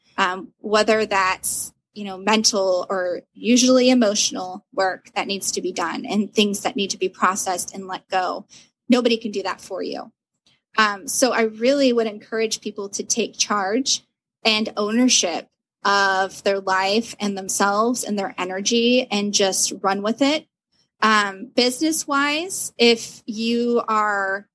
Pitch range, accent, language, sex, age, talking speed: 205-255 Hz, American, English, female, 20-39, 150 wpm